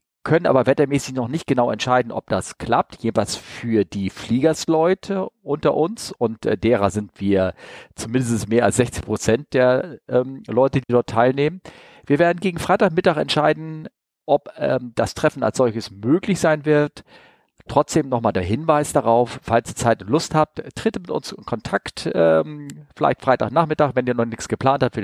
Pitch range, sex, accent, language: 120-165 Hz, male, German, German